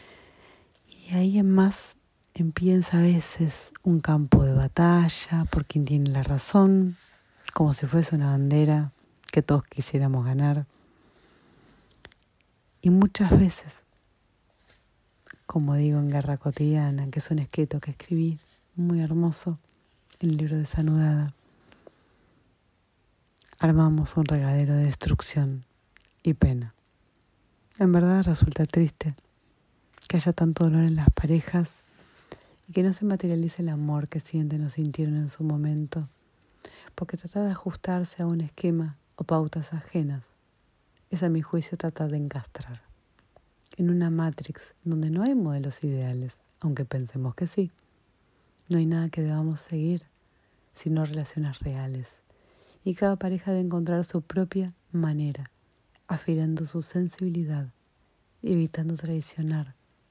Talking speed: 130 wpm